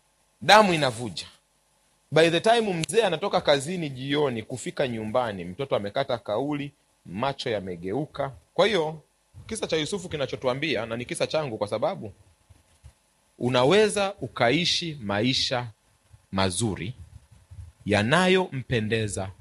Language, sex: Swahili, male